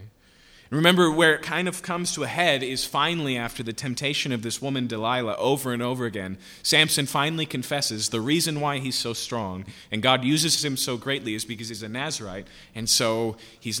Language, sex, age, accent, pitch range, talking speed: English, male, 30-49, American, 110-150 Hz, 195 wpm